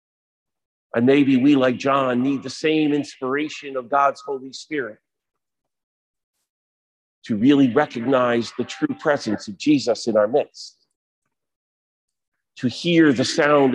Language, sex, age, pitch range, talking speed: English, male, 50-69, 115-145 Hz, 120 wpm